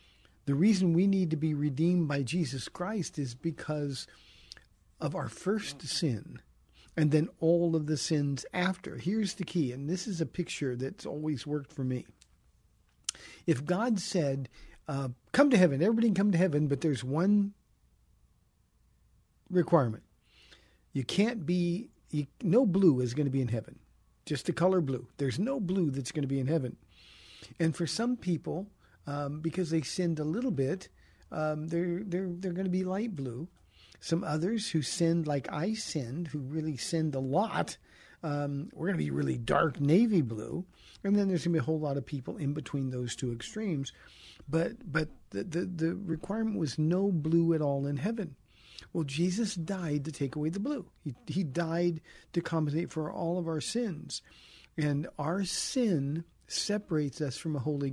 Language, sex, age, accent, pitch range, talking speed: English, male, 50-69, American, 140-180 Hz, 180 wpm